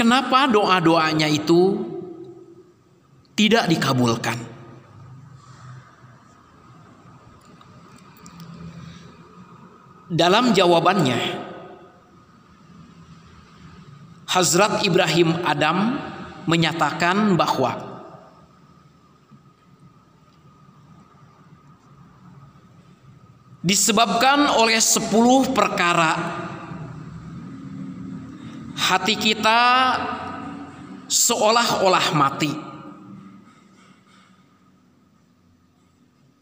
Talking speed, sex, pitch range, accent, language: 35 wpm, male, 155-205 Hz, native, Indonesian